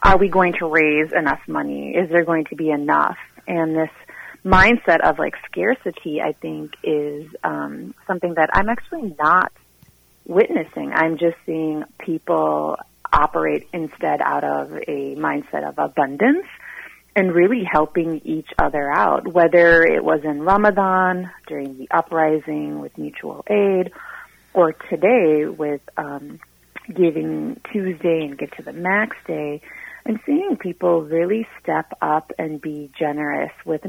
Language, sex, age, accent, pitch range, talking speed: English, female, 30-49, American, 150-185 Hz, 140 wpm